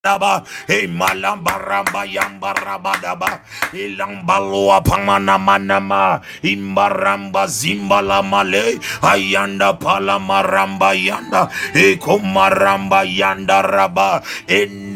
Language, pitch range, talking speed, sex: English, 95-100 Hz, 90 wpm, male